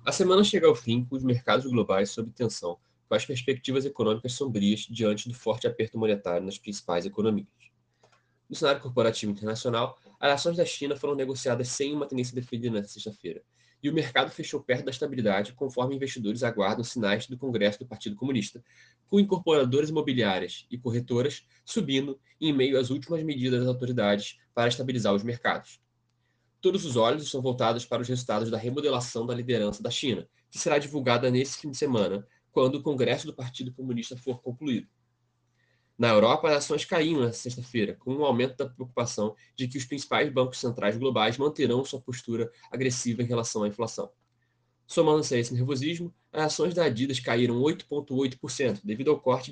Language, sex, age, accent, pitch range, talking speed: Portuguese, male, 20-39, Brazilian, 115-135 Hz, 170 wpm